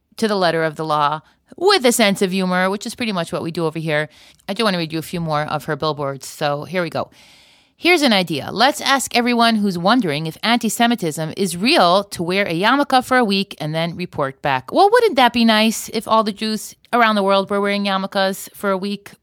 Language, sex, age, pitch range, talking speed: English, female, 30-49, 185-250 Hz, 240 wpm